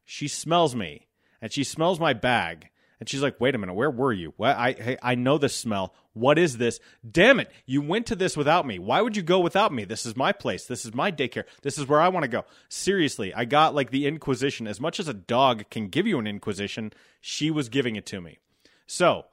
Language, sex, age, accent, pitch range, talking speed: English, male, 30-49, American, 115-155 Hz, 240 wpm